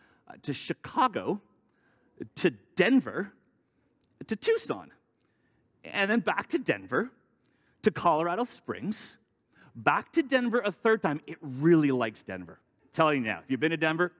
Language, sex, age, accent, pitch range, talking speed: English, male, 40-59, American, 135-225 Hz, 135 wpm